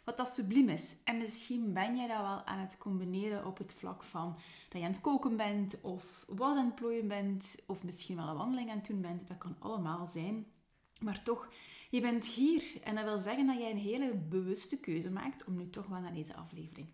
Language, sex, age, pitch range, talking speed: Dutch, female, 30-49, 180-240 Hz, 225 wpm